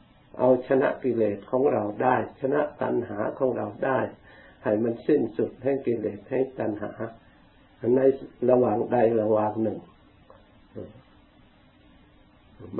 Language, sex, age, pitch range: Thai, male, 60-79, 105-130 Hz